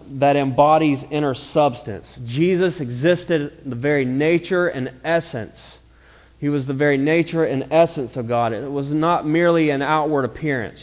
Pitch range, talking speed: 130-155 Hz, 155 wpm